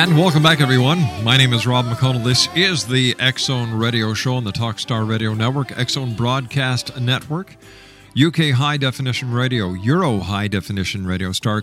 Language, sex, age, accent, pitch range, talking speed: English, male, 50-69, American, 105-130 Hz, 165 wpm